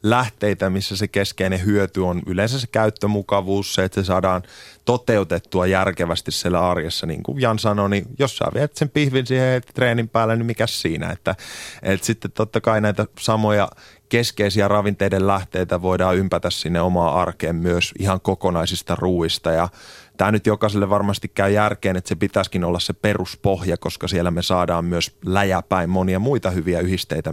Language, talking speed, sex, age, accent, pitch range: Finnish, 165 wpm, male, 30-49, native, 90-105 Hz